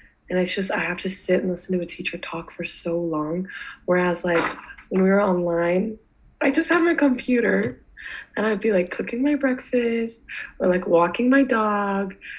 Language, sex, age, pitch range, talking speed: English, female, 20-39, 180-230 Hz, 190 wpm